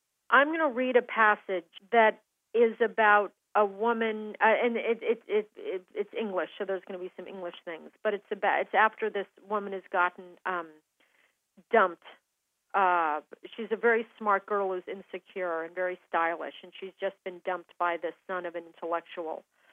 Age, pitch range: 40-59, 185-225 Hz